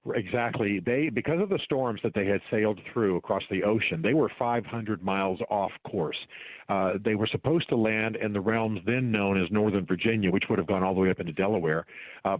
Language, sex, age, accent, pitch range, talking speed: English, male, 50-69, American, 100-130 Hz, 220 wpm